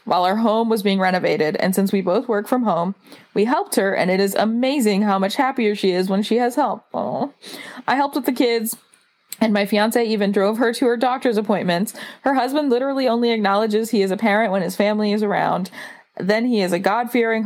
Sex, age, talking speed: female, 20-39, 220 wpm